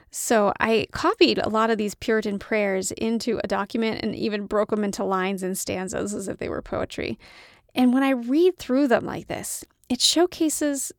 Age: 30-49